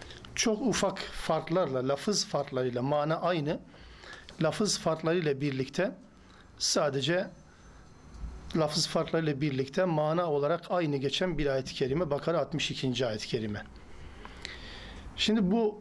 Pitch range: 140-180 Hz